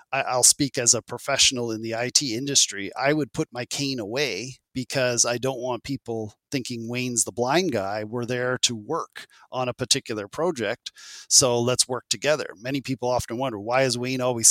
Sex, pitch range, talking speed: male, 120-145 Hz, 185 wpm